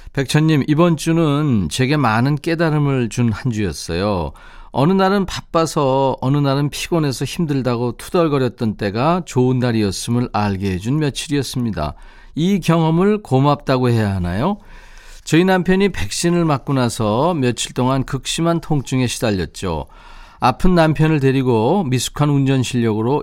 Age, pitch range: 40-59, 115-155 Hz